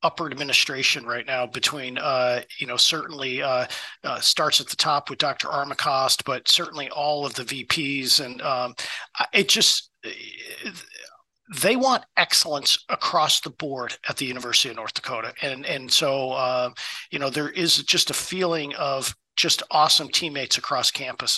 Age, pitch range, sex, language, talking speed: 40-59, 135-190 Hz, male, English, 160 wpm